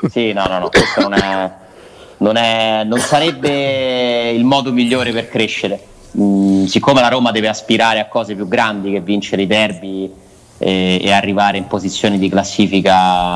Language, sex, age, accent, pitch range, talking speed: Italian, male, 30-49, native, 95-120 Hz, 160 wpm